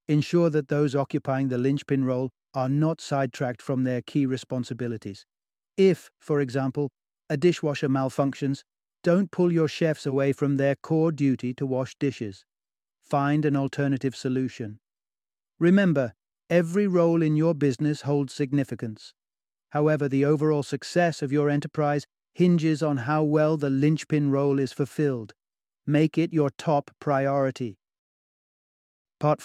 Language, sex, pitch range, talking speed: English, male, 130-155 Hz, 135 wpm